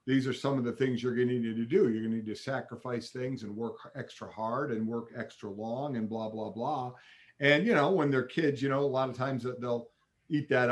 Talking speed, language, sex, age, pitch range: 260 wpm, English, male, 50-69, 120-145 Hz